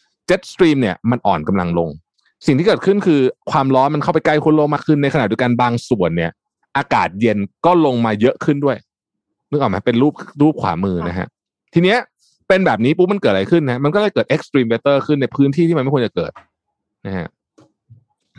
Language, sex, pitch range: Thai, male, 105-155 Hz